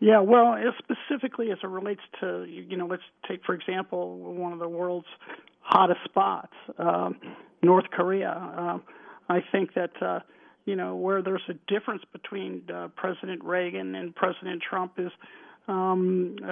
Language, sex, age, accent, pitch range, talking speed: English, male, 50-69, American, 165-190 Hz, 155 wpm